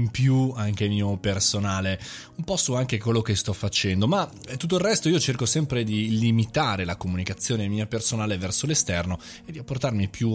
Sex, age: male, 20-39